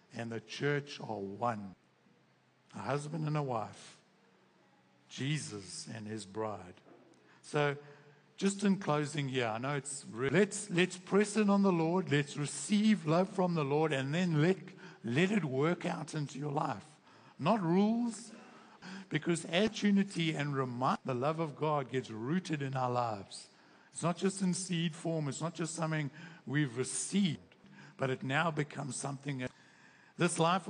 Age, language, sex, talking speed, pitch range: 60-79, English, male, 160 wpm, 135-180 Hz